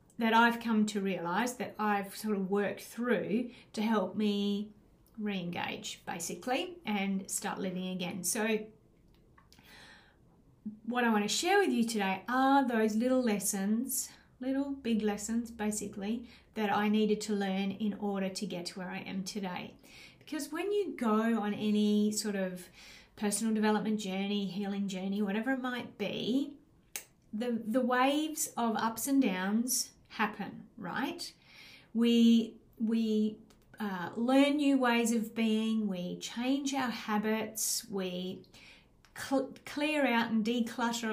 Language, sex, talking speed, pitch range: English, female, 135 wpm, 200-240 Hz